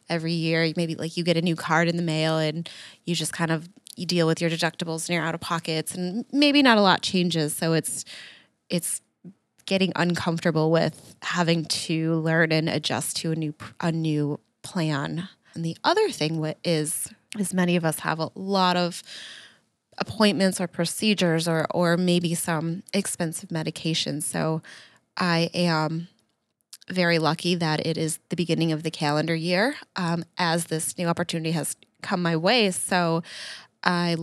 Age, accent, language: 20-39, American, English